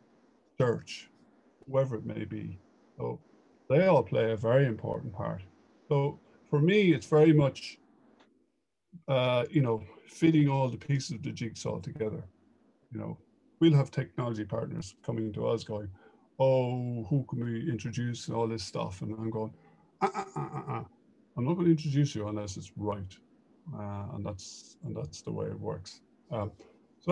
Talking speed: 170 wpm